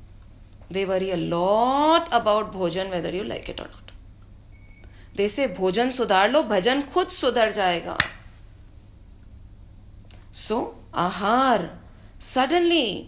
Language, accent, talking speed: English, Indian, 110 wpm